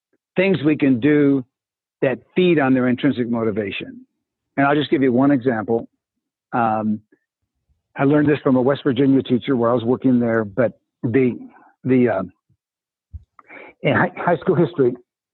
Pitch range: 130-170 Hz